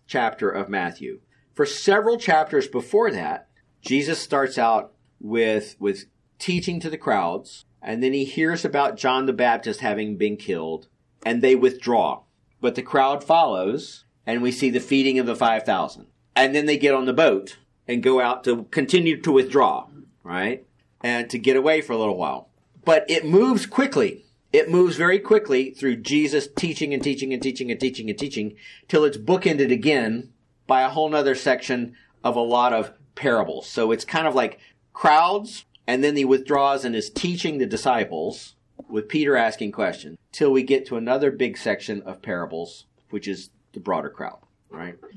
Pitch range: 120-155 Hz